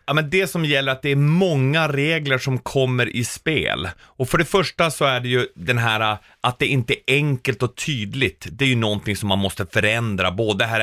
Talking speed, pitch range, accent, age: 225 wpm, 115-160 Hz, Swedish, 30-49